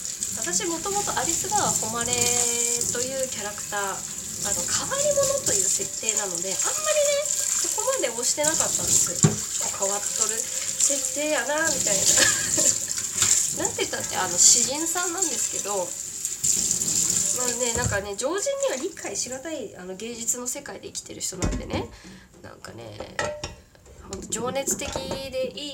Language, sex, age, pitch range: Japanese, female, 20-39, 210-310 Hz